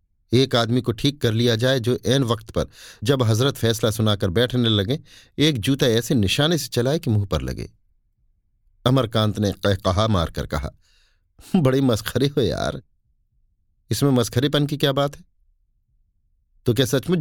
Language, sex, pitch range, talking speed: Hindi, male, 95-130 Hz, 160 wpm